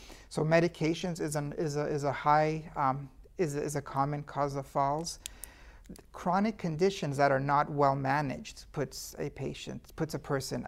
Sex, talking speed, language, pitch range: male, 170 wpm, English, 140-165 Hz